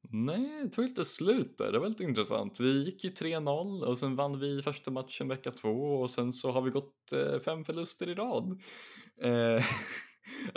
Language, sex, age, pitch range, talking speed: Swedish, male, 20-39, 105-140 Hz, 185 wpm